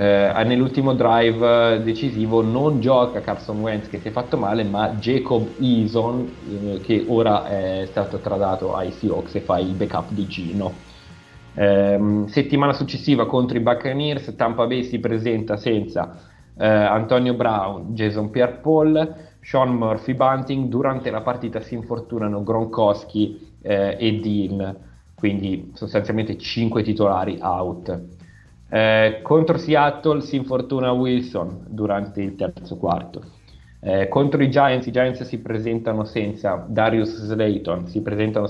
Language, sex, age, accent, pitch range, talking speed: Italian, male, 30-49, native, 105-125 Hz, 135 wpm